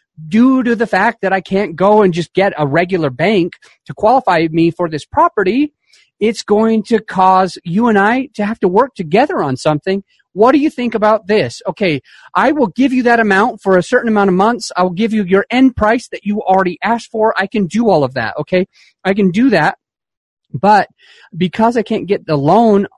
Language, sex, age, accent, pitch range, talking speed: English, male, 30-49, American, 150-200 Hz, 215 wpm